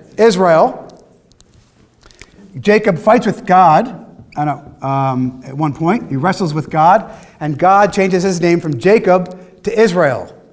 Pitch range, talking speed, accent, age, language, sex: 150-200 Hz, 120 wpm, American, 40-59, English, male